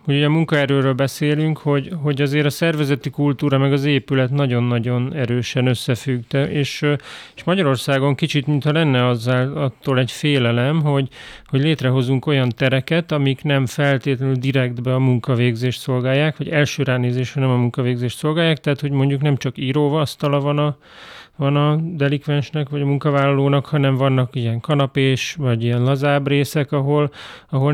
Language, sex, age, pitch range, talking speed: Hungarian, male, 30-49, 130-145 Hz, 145 wpm